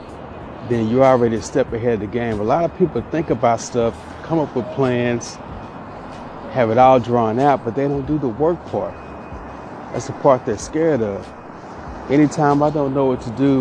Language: English